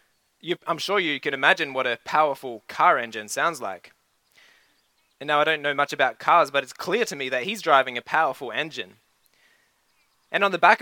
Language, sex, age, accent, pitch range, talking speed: English, male, 20-39, Australian, 140-185 Hz, 195 wpm